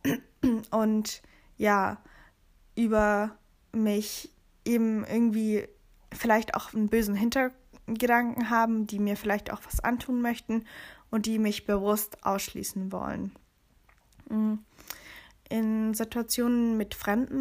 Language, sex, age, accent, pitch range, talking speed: German, female, 10-29, German, 195-225 Hz, 100 wpm